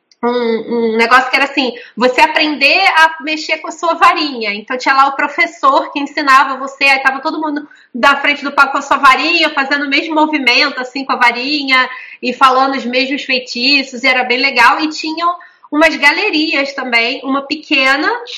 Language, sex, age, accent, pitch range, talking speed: Portuguese, female, 20-39, Brazilian, 250-320 Hz, 190 wpm